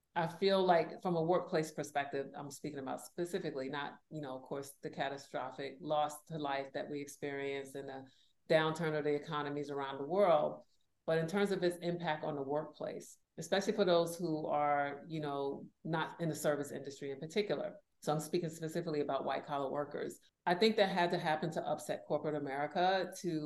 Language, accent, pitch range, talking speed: English, American, 145-160 Hz, 190 wpm